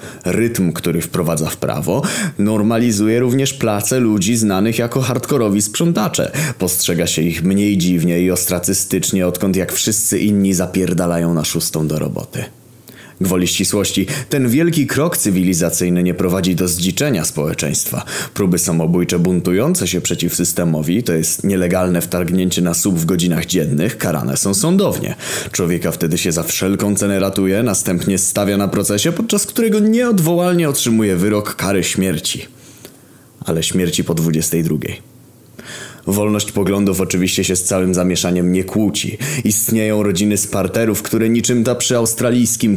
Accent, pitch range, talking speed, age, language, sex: native, 90-115 Hz, 135 wpm, 20-39, Polish, male